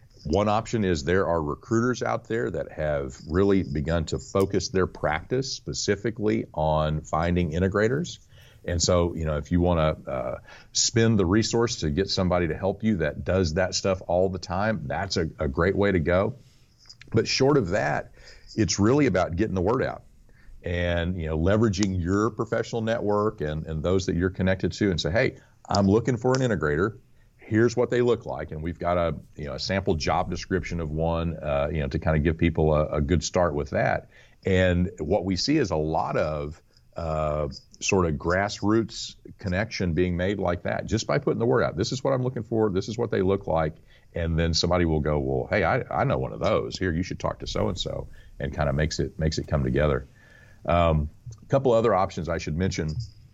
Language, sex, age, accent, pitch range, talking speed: English, male, 40-59, American, 80-110 Hz, 210 wpm